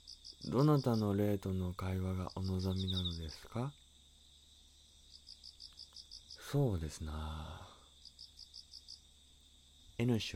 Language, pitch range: Japanese, 70-95 Hz